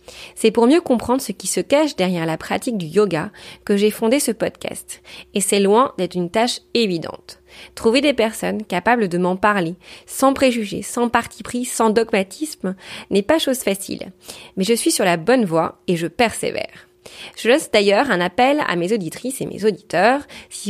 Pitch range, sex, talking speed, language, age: 180-240 Hz, female, 190 wpm, French, 30-49